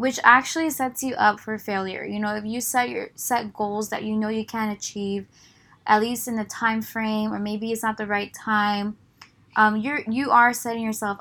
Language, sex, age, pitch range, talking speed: English, female, 10-29, 200-225 Hz, 215 wpm